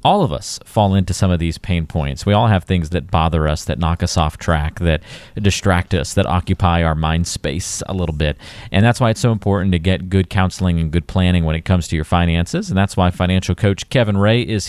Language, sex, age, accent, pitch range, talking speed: English, male, 40-59, American, 85-115 Hz, 245 wpm